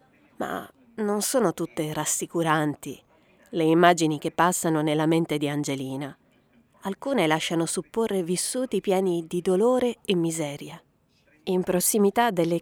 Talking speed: 120 wpm